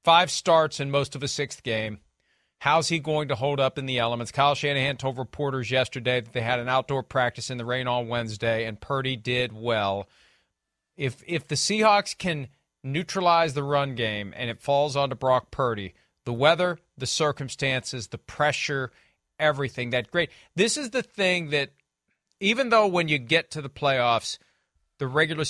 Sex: male